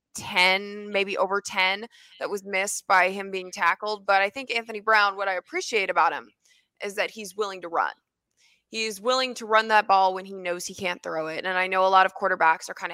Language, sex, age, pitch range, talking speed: English, female, 20-39, 185-230 Hz, 225 wpm